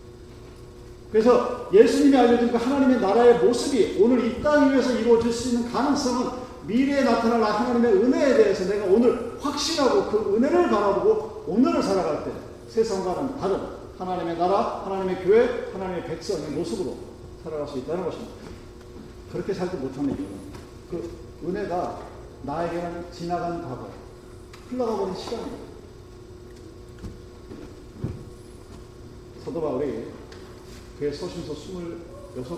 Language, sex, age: Korean, male, 40-59